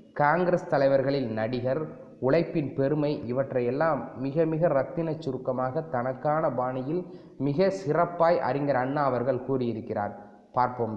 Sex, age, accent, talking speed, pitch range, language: male, 20-39, native, 105 wpm, 130-160 Hz, Tamil